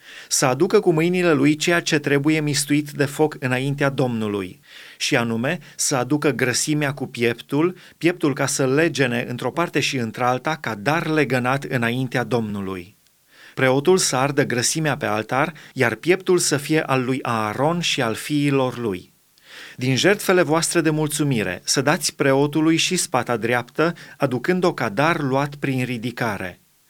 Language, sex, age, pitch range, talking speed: Romanian, male, 30-49, 130-160 Hz, 145 wpm